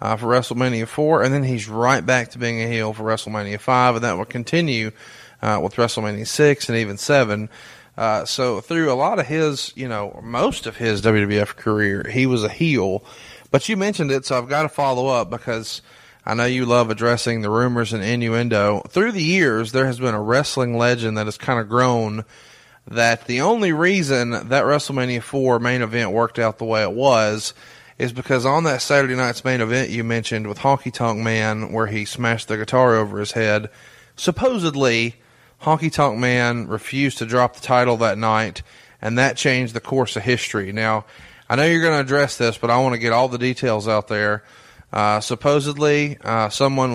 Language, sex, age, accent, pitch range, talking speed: English, male, 30-49, American, 110-130 Hz, 200 wpm